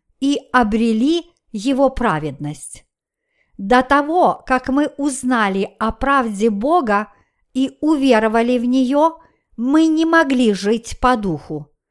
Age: 50-69